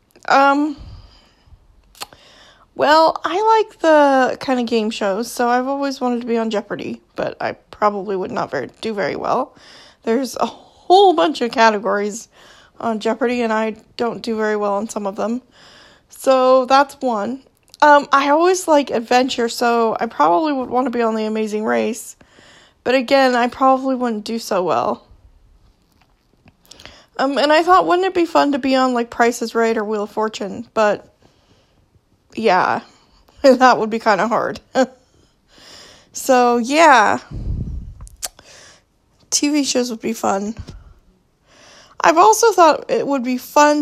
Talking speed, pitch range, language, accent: 155 wpm, 220-275 Hz, English, American